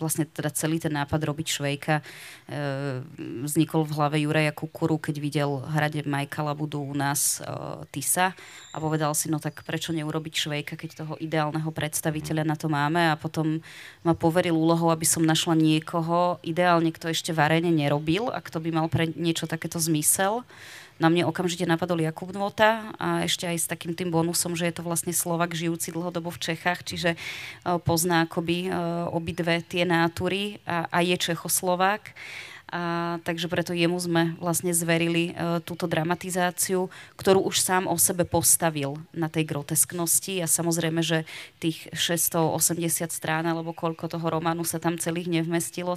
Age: 20-39